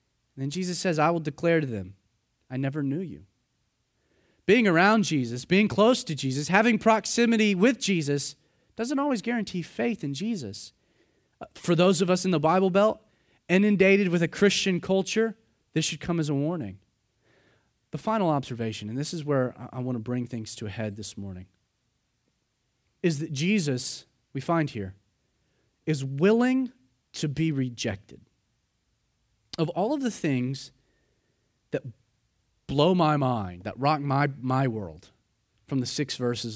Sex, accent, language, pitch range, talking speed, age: male, American, English, 110-175 Hz, 155 wpm, 30-49